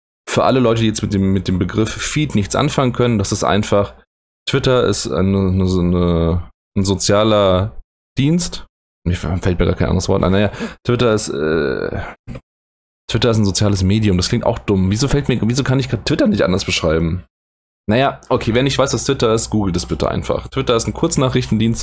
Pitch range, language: 90-110 Hz, German